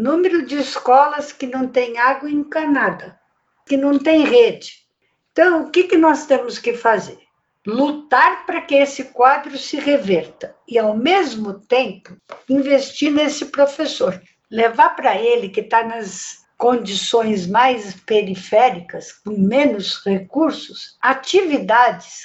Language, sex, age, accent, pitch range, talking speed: Portuguese, female, 60-79, Brazilian, 225-290 Hz, 125 wpm